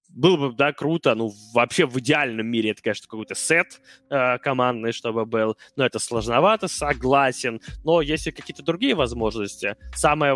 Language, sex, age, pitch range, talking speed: Russian, male, 20-39, 115-150 Hz, 160 wpm